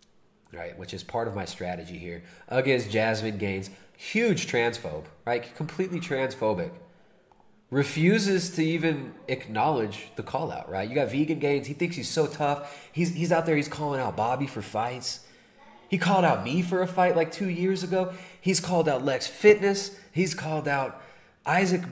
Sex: male